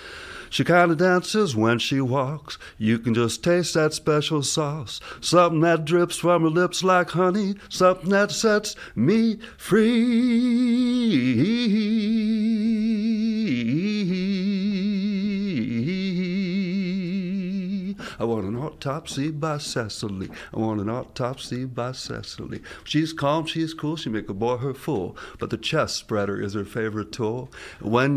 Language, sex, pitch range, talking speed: English, male, 145-195 Hz, 125 wpm